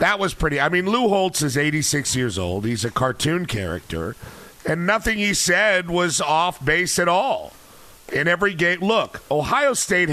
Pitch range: 130-155 Hz